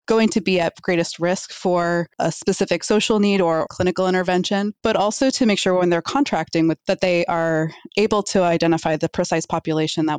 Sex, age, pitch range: female, 20-39, 160-190 Hz